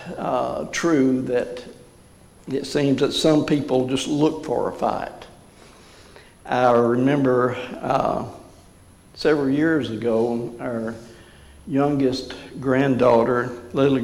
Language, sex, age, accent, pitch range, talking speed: English, male, 60-79, American, 125-165 Hz, 100 wpm